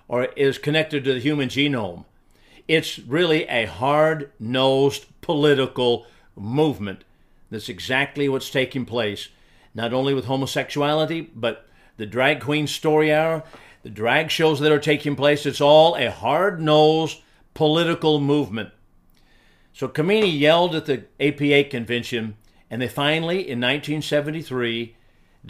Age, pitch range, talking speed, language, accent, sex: 50-69, 120-150 Hz, 125 wpm, English, American, male